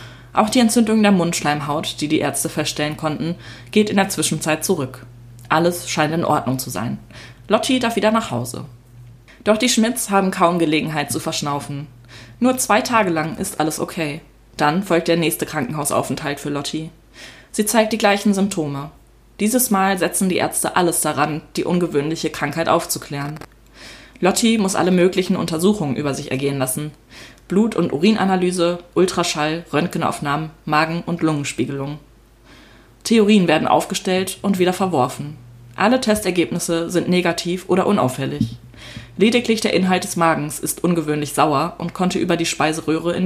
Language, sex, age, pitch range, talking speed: German, female, 20-39, 145-190 Hz, 150 wpm